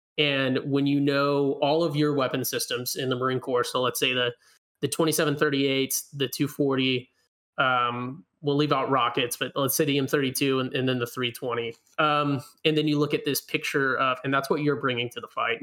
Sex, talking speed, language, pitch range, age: male, 205 wpm, English, 125-150 Hz, 20-39